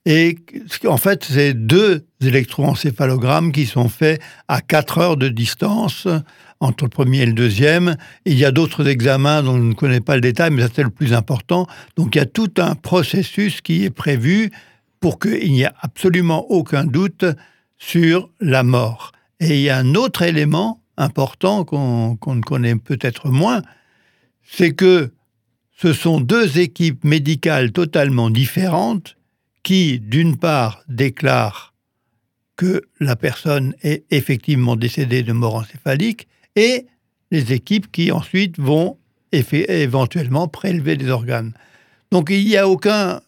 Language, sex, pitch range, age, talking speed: French, male, 130-175 Hz, 60-79, 150 wpm